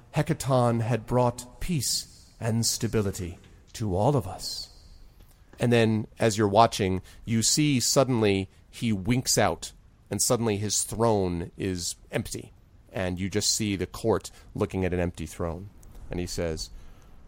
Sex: male